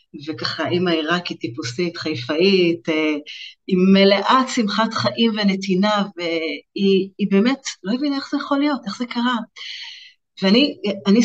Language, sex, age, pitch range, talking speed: Hebrew, female, 30-49, 170-235 Hz, 115 wpm